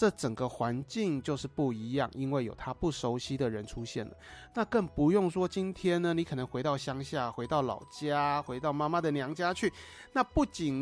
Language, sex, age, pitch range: Chinese, male, 30-49, 145-205 Hz